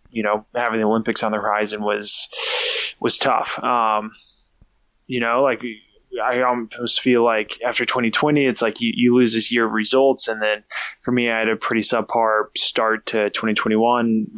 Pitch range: 110-120 Hz